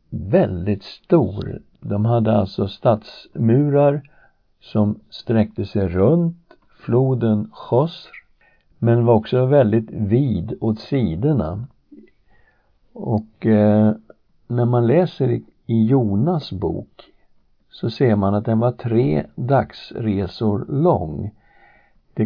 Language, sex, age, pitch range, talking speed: Swedish, male, 60-79, 105-120 Hz, 100 wpm